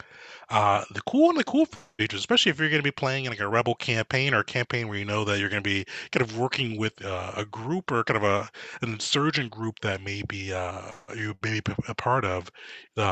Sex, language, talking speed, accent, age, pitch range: male, English, 250 wpm, American, 30-49, 105-135 Hz